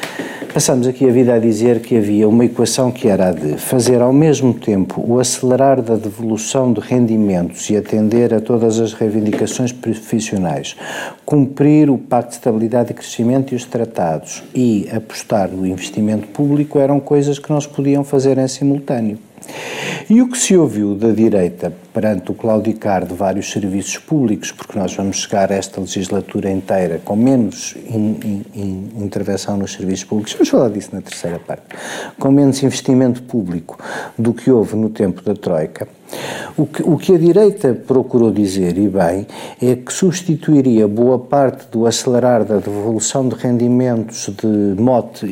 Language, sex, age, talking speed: Portuguese, male, 50-69, 165 wpm